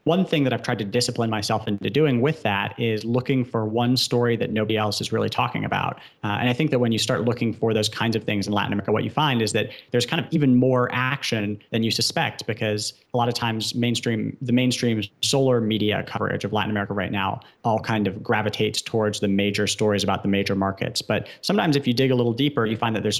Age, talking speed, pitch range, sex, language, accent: 30-49, 245 wpm, 105-125 Hz, male, English, American